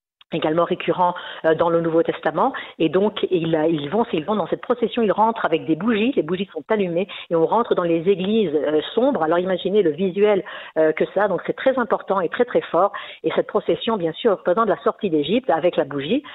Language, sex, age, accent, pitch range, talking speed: French, female, 50-69, French, 165-215 Hz, 215 wpm